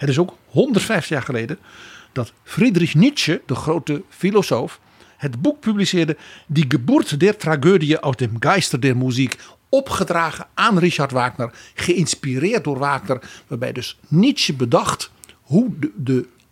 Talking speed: 140 wpm